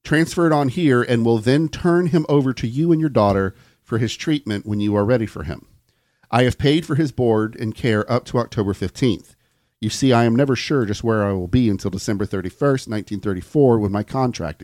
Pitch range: 105-140 Hz